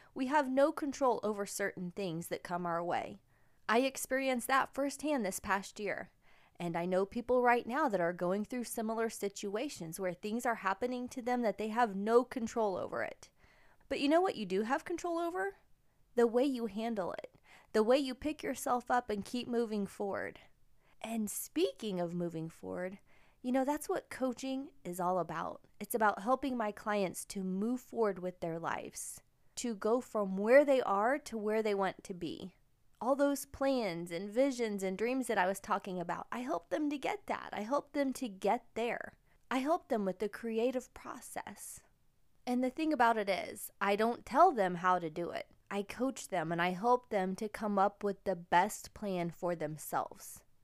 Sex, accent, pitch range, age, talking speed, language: female, American, 190-255 Hz, 20-39, 195 wpm, English